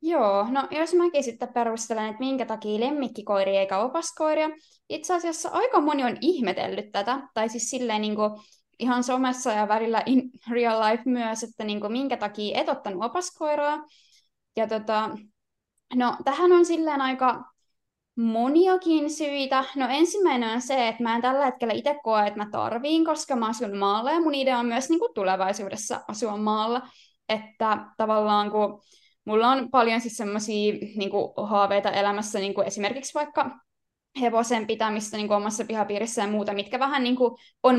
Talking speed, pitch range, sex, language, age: 150 wpm, 215-275 Hz, female, Finnish, 20-39